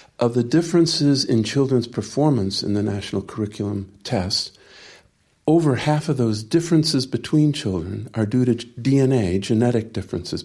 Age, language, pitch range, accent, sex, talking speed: 50-69, English, 105-140 Hz, American, male, 140 wpm